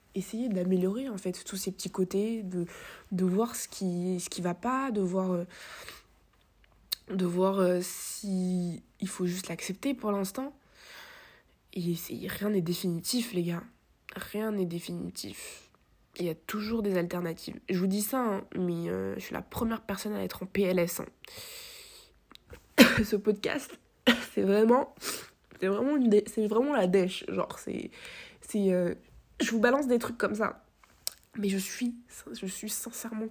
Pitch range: 180-225 Hz